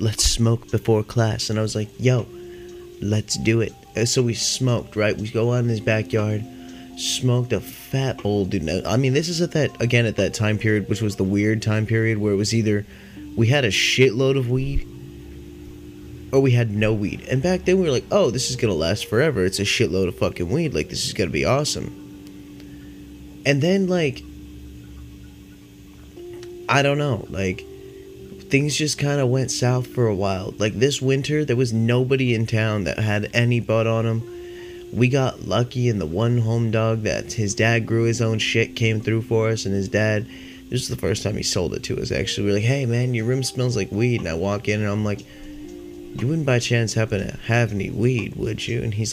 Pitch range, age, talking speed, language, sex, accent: 100-130 Hz, 20-39, 220 wpm, English, male, American